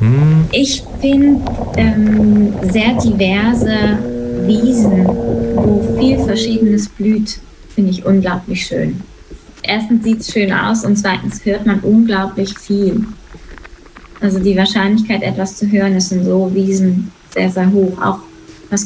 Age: 20-39